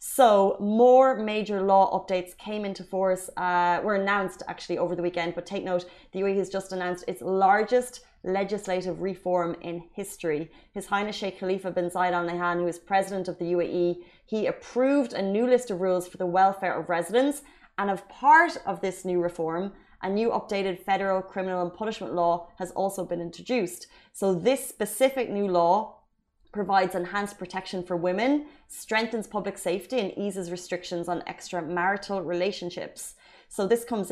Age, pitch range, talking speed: 20-39, 175-205 Hz, 170 wpm